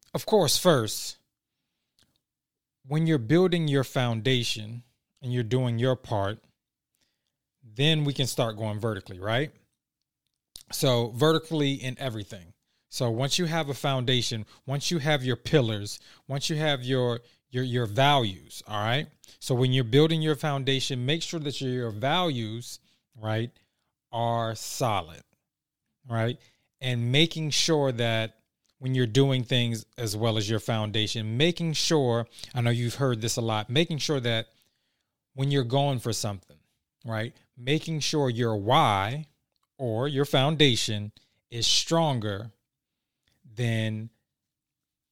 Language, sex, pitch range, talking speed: English, male, 115-145 Hz, 135 wpm